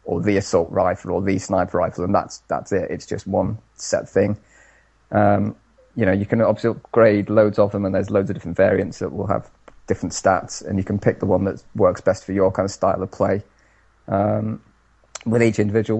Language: English